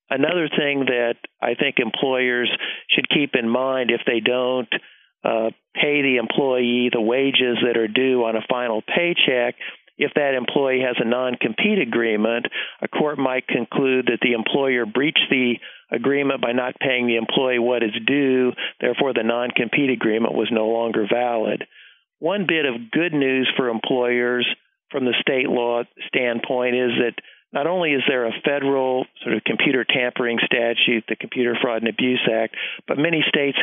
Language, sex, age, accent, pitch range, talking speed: English, male, 50-69, American, 115-130 Hz, 165 wpm